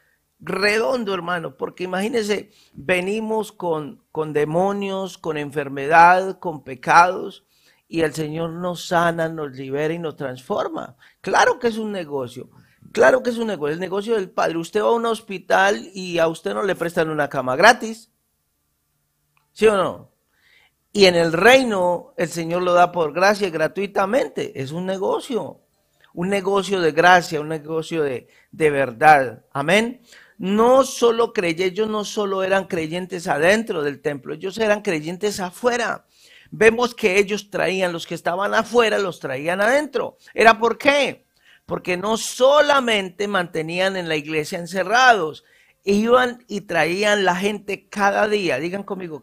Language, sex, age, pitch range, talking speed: Spanish, male, 50-69, 160-210 Hz, 150 wpm